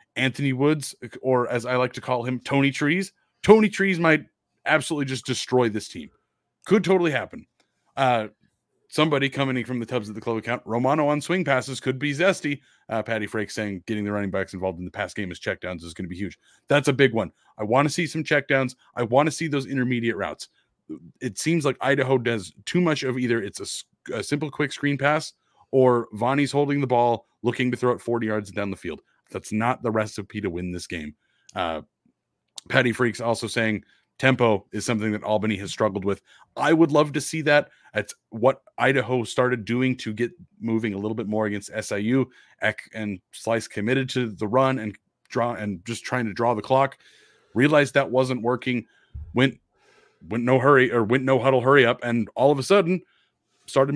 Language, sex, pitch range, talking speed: English, male, 110-140 Hz, 205 wpm